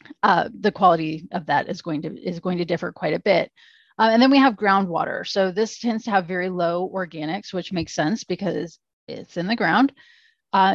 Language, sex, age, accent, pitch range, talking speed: English, female, 30-49, American, 175-210 Hz, 210 wpm